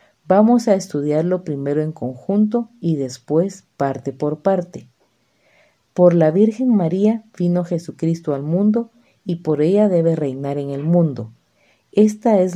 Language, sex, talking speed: Spanish, female, 140 wpm